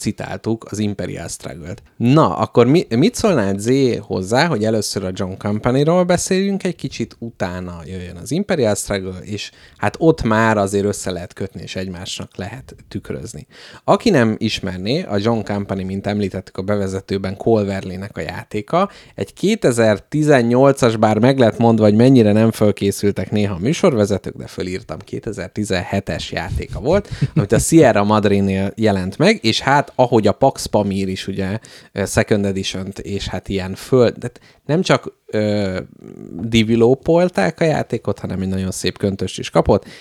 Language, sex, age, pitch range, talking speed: Hungarian, male, 30-49, 95-120 Hz, 150 wpm